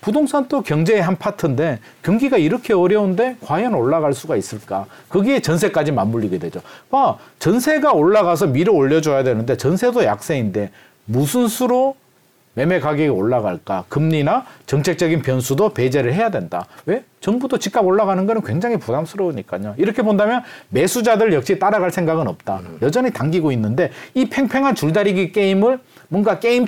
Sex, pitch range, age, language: male, 135-215 Hz, 40-59, Korean